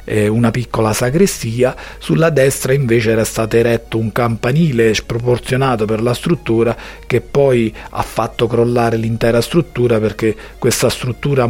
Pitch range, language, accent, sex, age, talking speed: 115-130 Hz, Italian, native, male, 40-59, 130 wpm